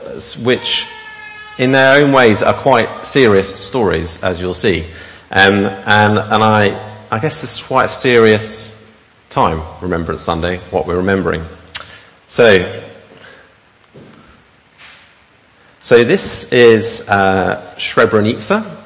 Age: 40-59